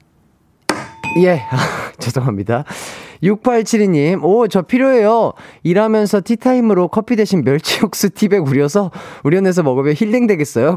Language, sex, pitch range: Korean, male, 125-200 Hz